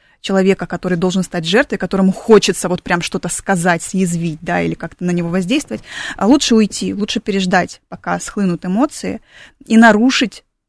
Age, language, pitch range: 20-39, Russian, 180-215 Hz